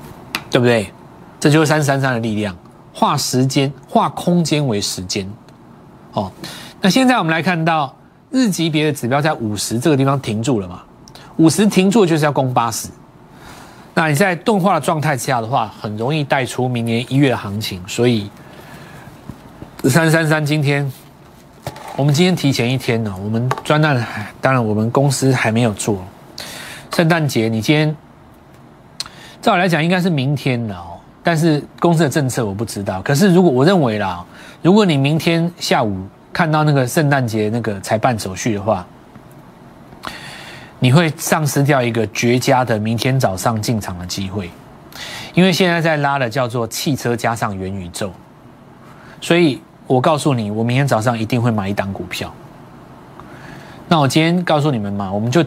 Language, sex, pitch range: Chinese, male, 110-155 Hz